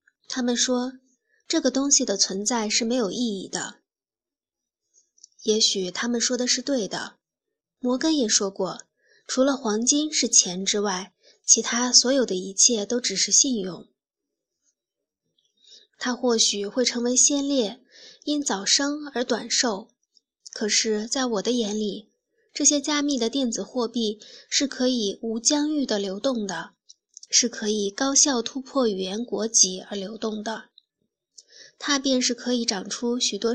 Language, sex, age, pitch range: Chinese, female, 20-39, 210-260 Hz